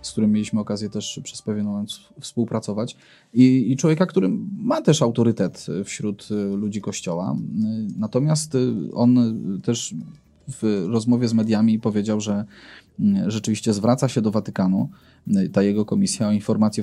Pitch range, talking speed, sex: 105-135 Hz, 135 wpm, male